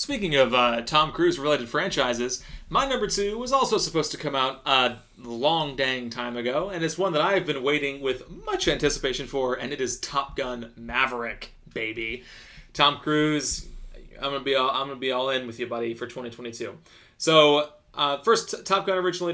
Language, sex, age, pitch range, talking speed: English, male, 30-49, 125-170 Hz, 185 wpm